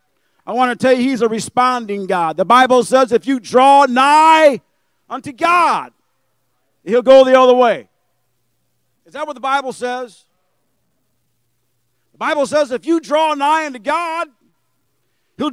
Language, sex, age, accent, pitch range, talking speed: English, male, 50-69, American, 185-265 Hz, 150 wpm